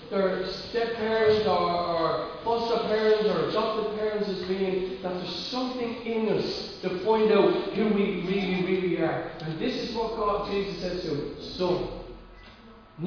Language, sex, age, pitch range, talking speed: English, male, 40-59, 195-250 Hz, 165 wpm